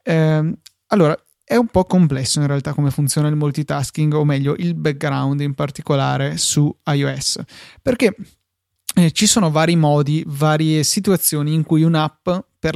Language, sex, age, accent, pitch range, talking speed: Italian, male, 20-39, native, 140-165 Hz, 145 wpm